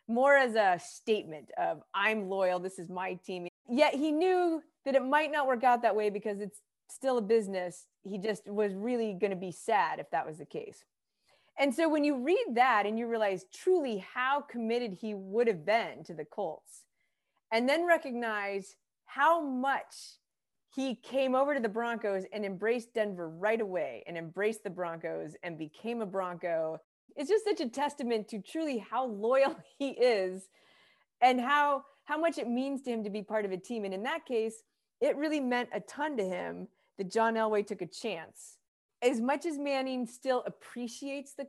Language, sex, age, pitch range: English, female, 30-49, 185-265 Hz